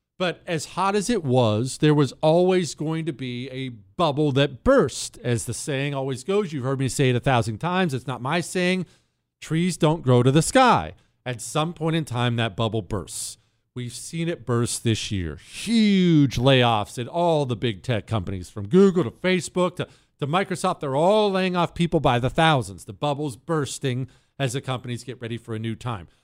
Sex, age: male, 50-69